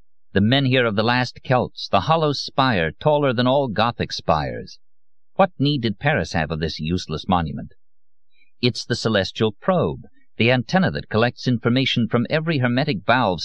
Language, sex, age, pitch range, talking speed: English, male, 50-69, 90-125 Hz, 165 wpm